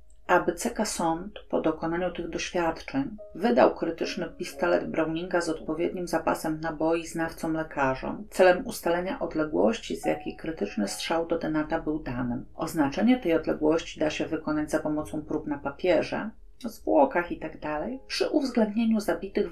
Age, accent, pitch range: 40-59, native, 155-205 Hz